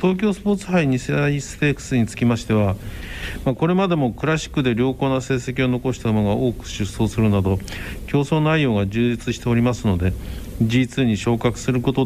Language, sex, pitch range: Japanese, male, 100-135 Hz